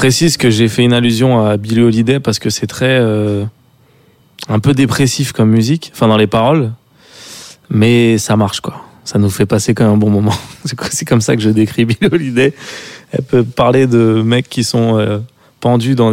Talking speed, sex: 210 wpm, male